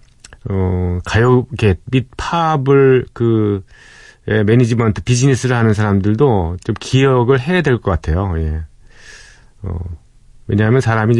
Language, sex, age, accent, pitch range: Korean, male, 40-59, native, 90-125 Hz